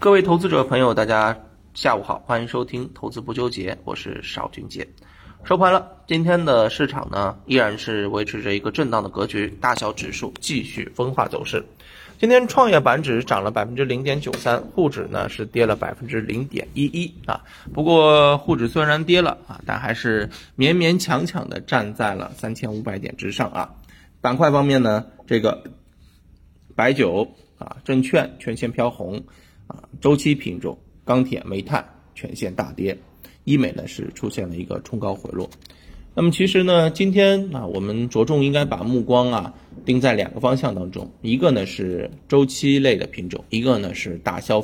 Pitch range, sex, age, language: 100-135 Hz, male, 20-39, Chinese